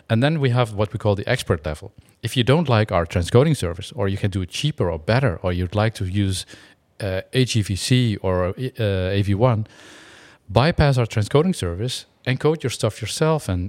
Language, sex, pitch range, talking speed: English, male, 95-120 Hz, 195 wpm